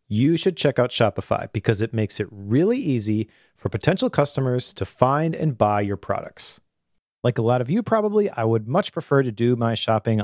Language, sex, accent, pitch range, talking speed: English, male, American, 115-160 Hz, 200 wpm